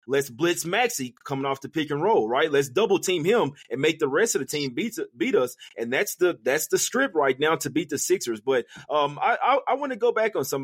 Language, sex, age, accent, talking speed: English, male, 30-49, American, 265 wpm